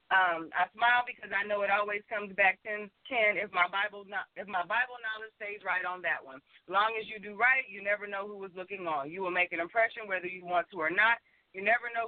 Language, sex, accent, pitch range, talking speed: English, female, American, 195-235 Hz, 250 wpm